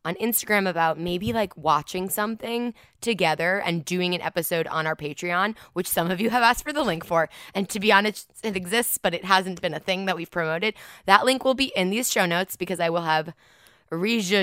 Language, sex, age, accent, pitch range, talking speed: English, female, 20-39, American, 165-200 Hz, 220 wpm